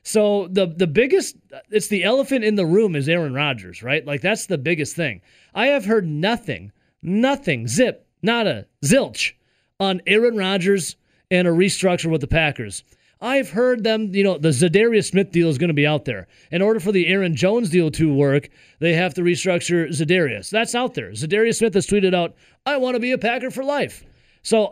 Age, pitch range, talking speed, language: 30-49, 150-210 Hz, 200 wpm, English